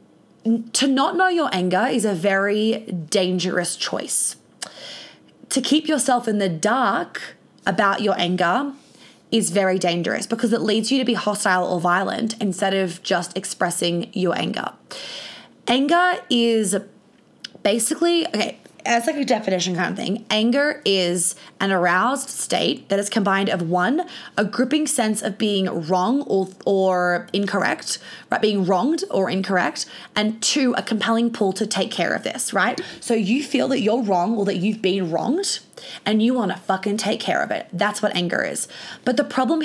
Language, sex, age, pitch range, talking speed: English, female, 20-39, 185-235 Hz, 165 wpm